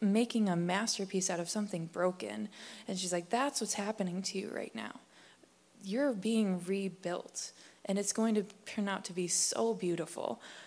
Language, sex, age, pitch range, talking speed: English, female, 20-39, 175-215 Hz, 170 wpm